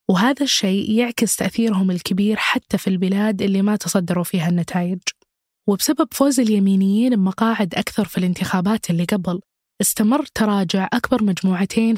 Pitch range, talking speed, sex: 185-230 Hz, 130 wpm, female